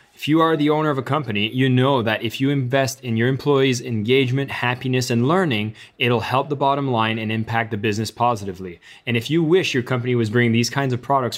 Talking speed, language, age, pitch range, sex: 225 wpm, English, 20-39, 110-130 Hz, male